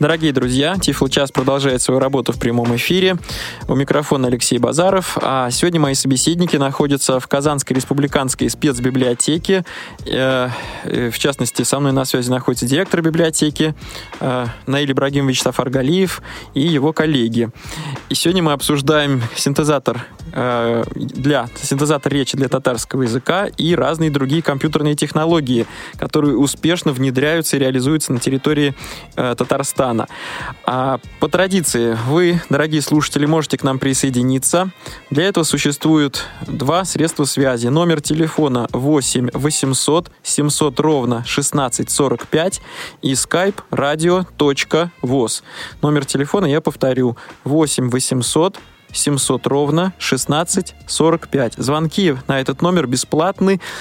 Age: 20-39